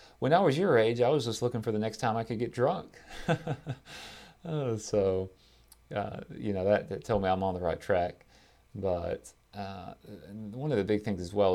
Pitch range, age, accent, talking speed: 85-105 Hz, 30-49, American, 205 wpm